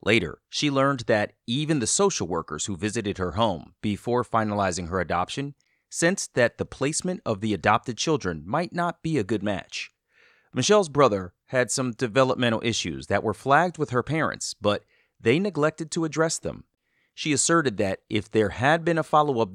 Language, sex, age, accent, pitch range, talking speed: English, male, 30-49, American, 105-150 Hz, 175 wpm